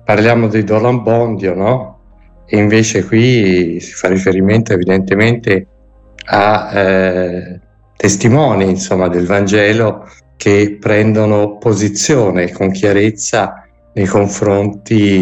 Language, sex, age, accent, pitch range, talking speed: Italian, male, 60-79, native, 90-105 Hz, 95 wpm